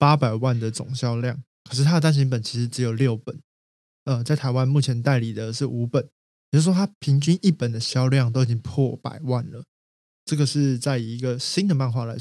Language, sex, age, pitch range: Chinese, male, 20-39, 120-145 Hz